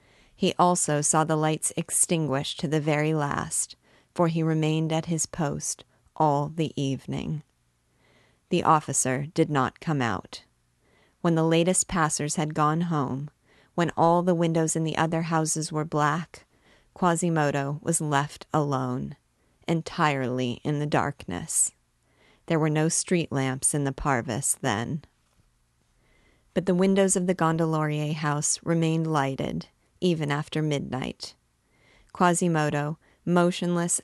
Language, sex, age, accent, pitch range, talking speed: English, female, 30-49, American, 140-170 Hz, 130 wpm